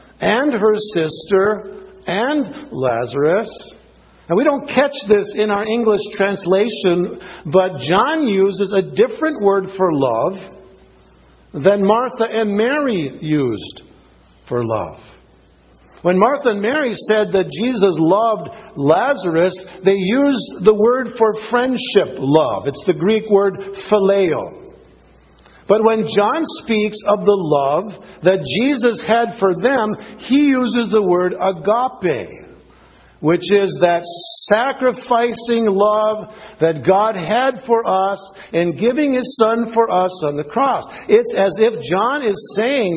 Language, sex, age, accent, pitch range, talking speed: English, male, 60-79, American, 180-230 Hz, 130 wpm